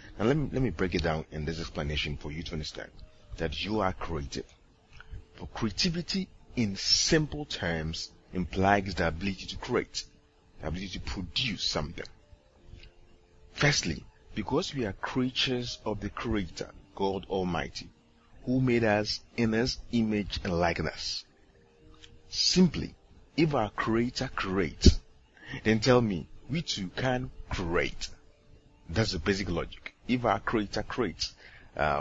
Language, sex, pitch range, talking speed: English, male, 85-120 Hz, 135 wpm